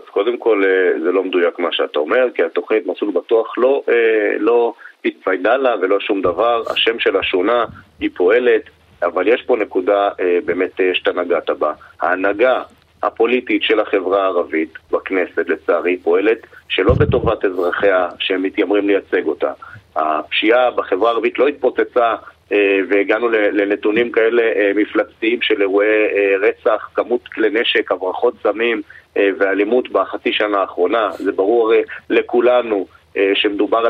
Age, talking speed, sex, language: 40-59, 135 wpm, male, Hebrew